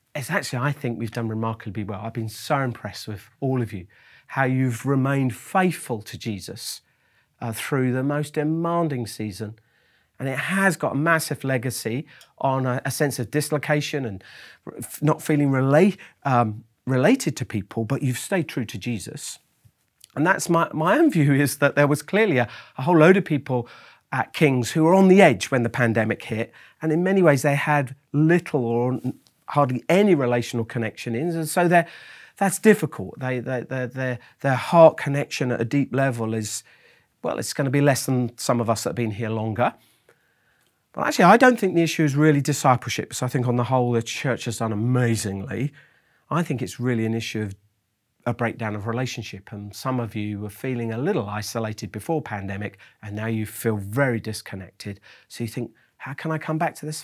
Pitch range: 115-150 Hz